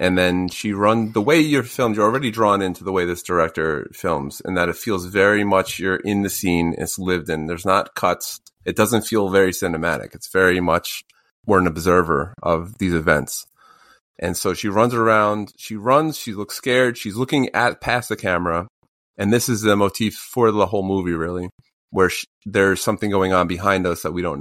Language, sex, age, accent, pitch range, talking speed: English, male, 30-49, American, 90-110 Hz, 205 wpm